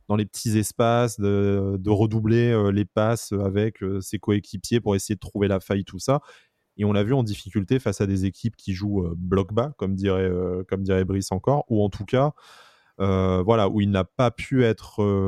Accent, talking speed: French, 205 wpm